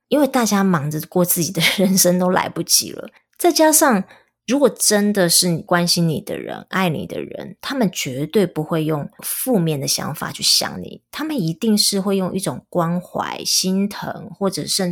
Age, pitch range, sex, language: 30-49, 155-190 Hz, female, Chinese